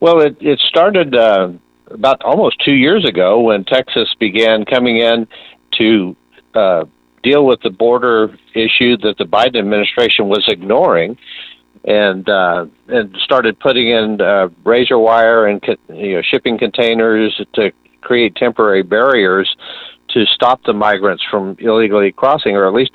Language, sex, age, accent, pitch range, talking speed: English, male, 50-69, American, 100-120 Hz, 145 wpm